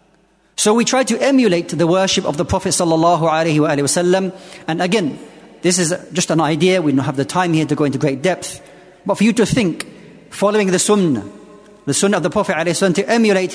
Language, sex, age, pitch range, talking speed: English, male, 40-59, 165-200 Hz, 190 wpm